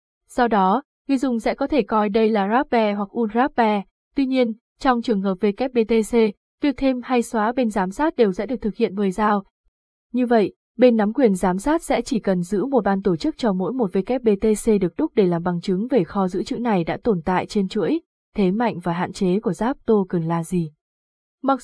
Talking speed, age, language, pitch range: 220 wpm, 20-39, Vietnamese, 200-245 Hz